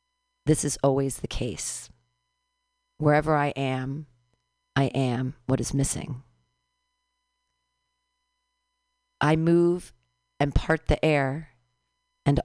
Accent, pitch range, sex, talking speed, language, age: American, 135-205 Hz, female, 95 wpm, English, 40-59